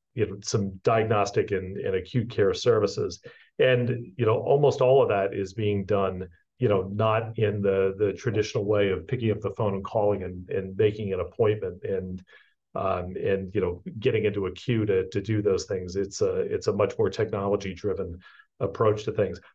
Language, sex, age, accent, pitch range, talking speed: English, male, 40-59, American, 100-125 Hz, 195 wpm